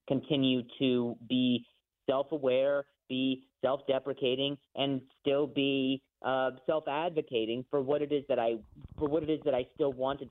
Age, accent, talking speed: 30-49, American, 145 wpm